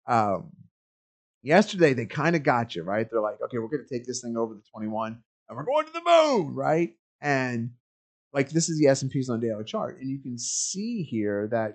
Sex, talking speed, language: male, 220 wpm, English